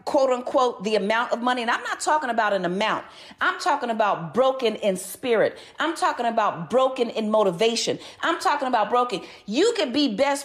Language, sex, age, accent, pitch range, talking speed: English, female, 40-59, American, 210-285 Hz, 190 wpm